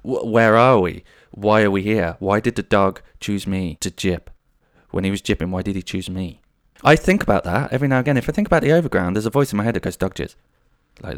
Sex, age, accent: male, 20-39, British